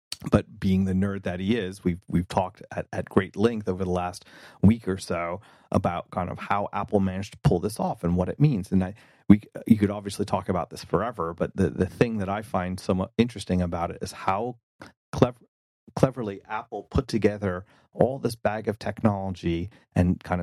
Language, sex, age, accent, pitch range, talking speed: English, male, 30-49, American, 90-105 Hz, 205 wpm